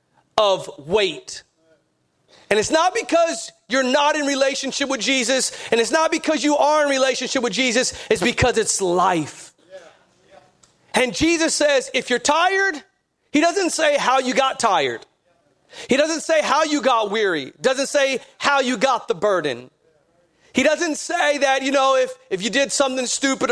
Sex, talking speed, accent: male, 170 wpm, American